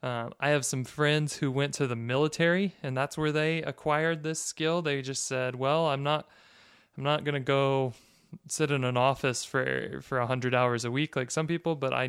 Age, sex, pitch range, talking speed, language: 20-39, male, 125-150 Hz, 215 wpm, English